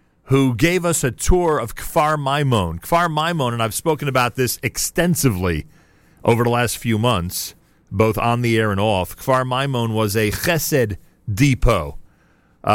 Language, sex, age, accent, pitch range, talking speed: English, male, 40-59, American, 100-130 Hz, 155 wpm